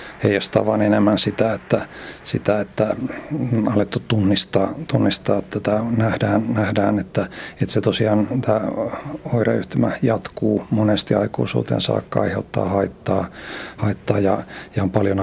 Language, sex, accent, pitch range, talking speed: Finnish, male, native, 100-115 Hz, 120 wpm